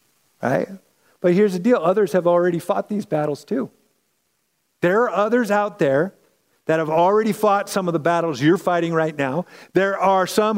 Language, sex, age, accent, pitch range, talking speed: English, male, 50-69, American, 180-220 Hz, 180 wpm